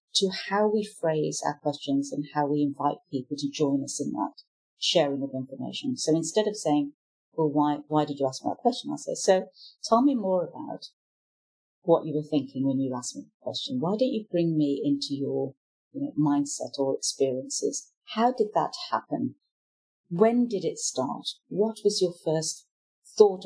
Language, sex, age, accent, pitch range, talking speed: English, female, 40-59, British, 145-215 Hz, 190 wpm